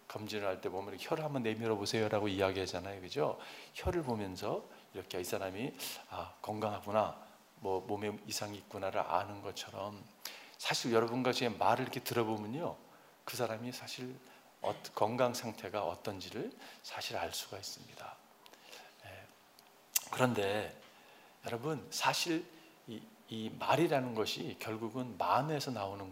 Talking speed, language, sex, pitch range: 110 wpm, English, male, 105-140 Hz